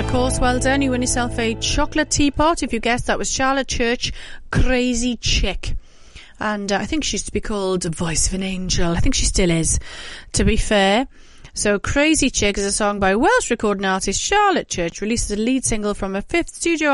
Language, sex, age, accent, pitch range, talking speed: English, female, 30-49, British, 200-255 Hz, 215 wpm